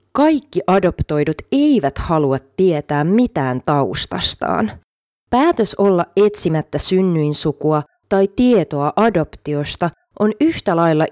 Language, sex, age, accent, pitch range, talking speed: Finnish, female, 30-49, native, 150-205 Hz, 90 wpm